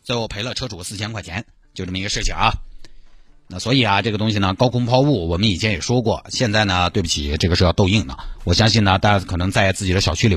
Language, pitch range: Chinese, 90-120 Hz